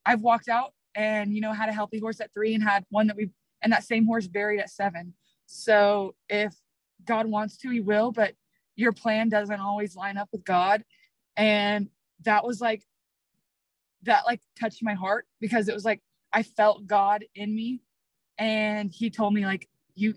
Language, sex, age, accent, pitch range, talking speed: English, female, 20-39, American, 195-220 Hz, 190 wpm